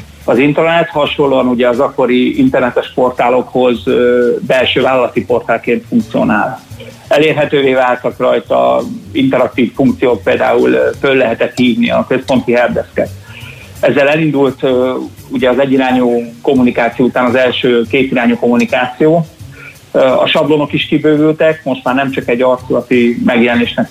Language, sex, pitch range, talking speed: Hungarian, male, 120-145 Hz, 115 wpm